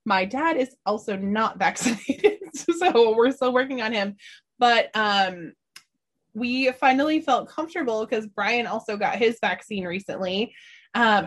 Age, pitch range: 20-39, 190-255 Hz